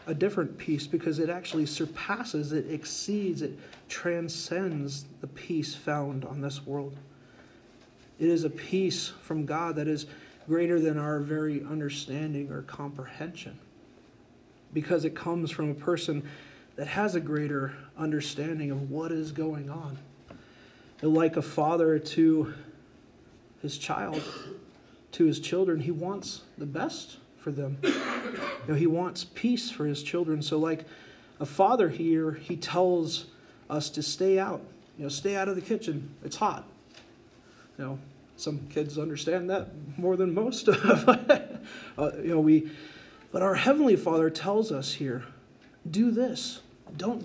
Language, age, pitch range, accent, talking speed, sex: English, 30-49, 150-180 Hz, American, 145 wpm, male